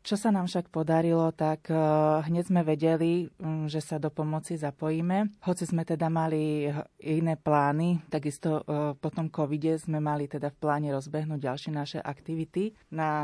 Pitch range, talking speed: 140-160 Hz, 155 wpm